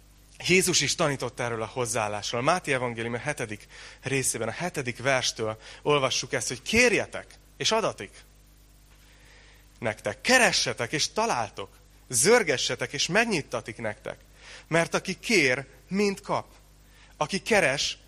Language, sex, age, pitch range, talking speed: Hungarian, male, 30-49, 110-165 Hz, 120 wpm